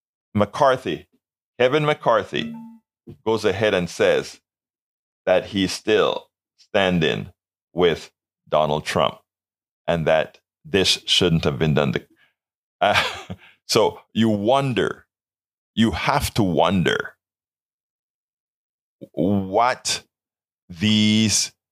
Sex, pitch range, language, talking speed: male, 90-135 Hz, English, 85 wpm